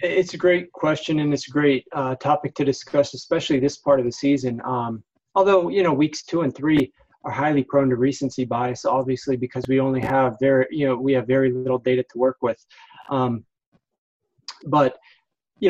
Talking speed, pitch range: 195 wpm, 130-150 Hz